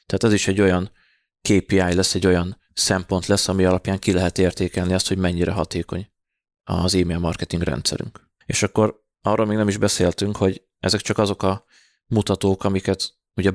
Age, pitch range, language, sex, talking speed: 20-39, 90-100 Hz, Hungarian, male, 175 wpm